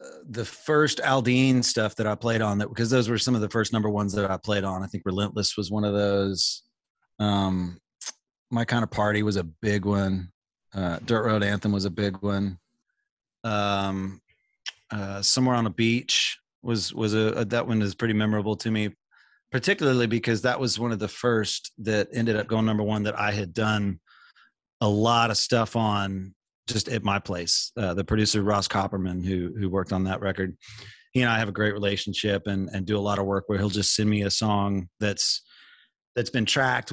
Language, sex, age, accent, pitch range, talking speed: English, male, 30-49, American, 100-115 Hz, 205 wpm